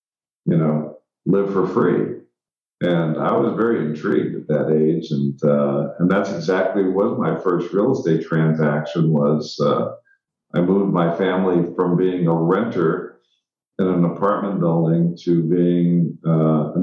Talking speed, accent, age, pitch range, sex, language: 145 wpm, American, 50-69, 85-110 Hz, male, English